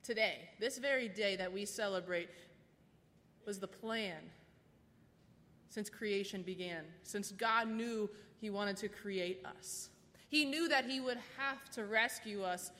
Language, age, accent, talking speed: English, 20-39, American, 140 wpm